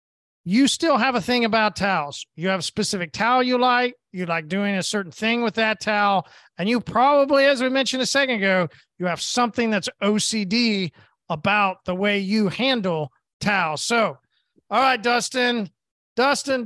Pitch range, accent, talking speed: 200-240 Hz, American, 175 wpm